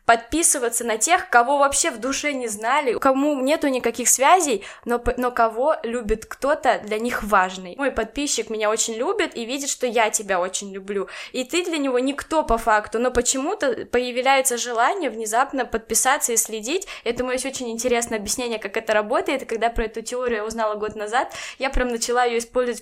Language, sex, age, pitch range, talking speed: Russian, female, 10-29, 225-265 Hz, 180 wpm